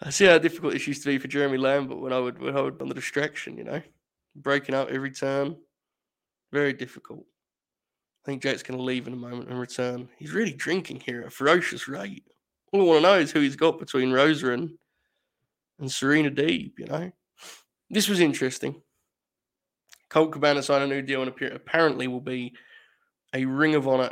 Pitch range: 130-160 Hz